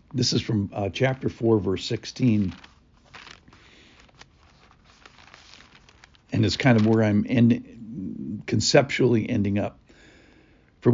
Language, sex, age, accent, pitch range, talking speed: English, male, 60-79, American, 100-130 Hz, 105 wpm